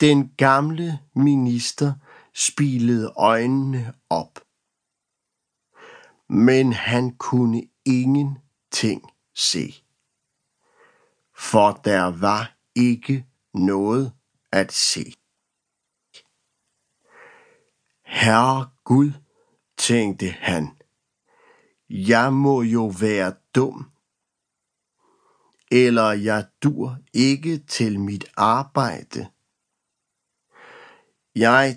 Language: Danish